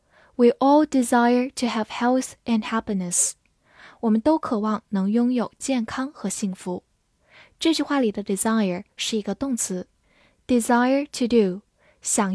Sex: female